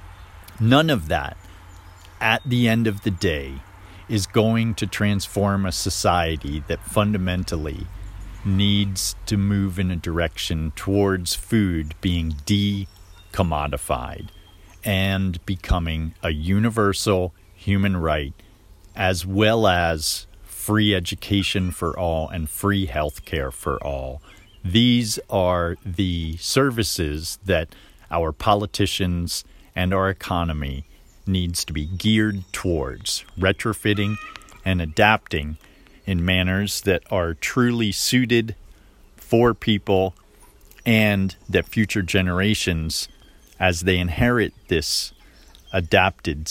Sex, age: male, 40-59